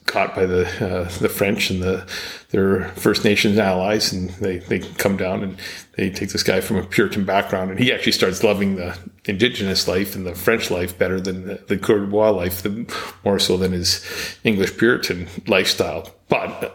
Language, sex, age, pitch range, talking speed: English, male, 40-59, 95-110 Hz, 195 wpm